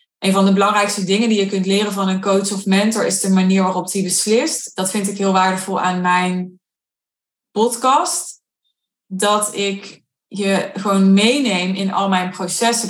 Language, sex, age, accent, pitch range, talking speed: Dutch, female, 20-39, Dutch, 185-220 Hz, 170 wpm